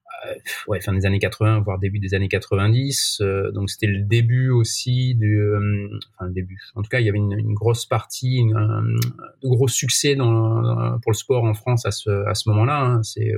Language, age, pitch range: French, 30-49, 105-125 Hz